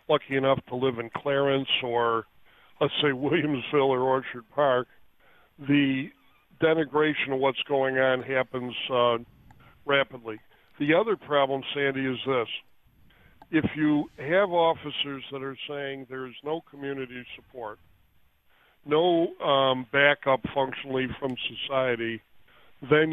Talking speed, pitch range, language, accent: 120 wpm, 125-140 Hz, English, American